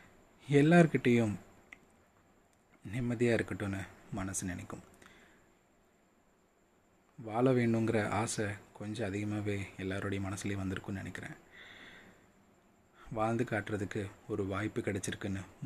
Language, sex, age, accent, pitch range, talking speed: Tamil, male, 30-49, native, 95-115 Hz, 75 wpm